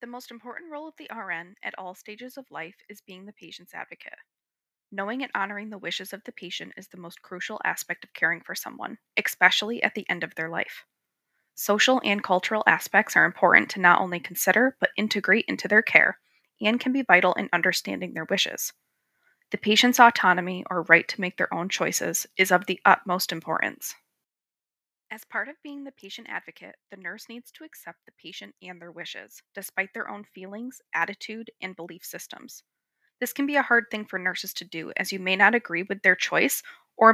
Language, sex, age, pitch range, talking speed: English, female, 20-39, 180-225 Hz, 200 wpm